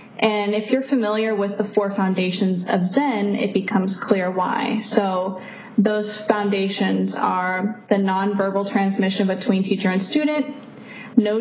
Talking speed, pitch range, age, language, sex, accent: 135 wpm, 195-220 Hz, 10-29, English, female, American